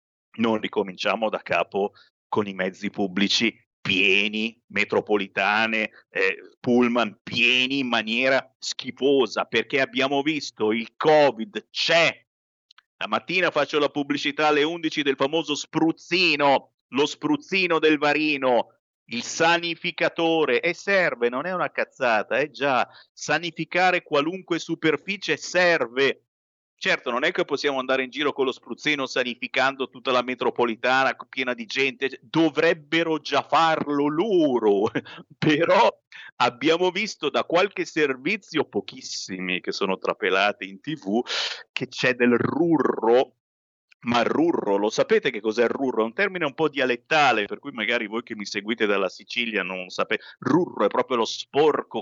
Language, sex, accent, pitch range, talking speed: Italian, male, native, 115-170 Hz, 135 wpm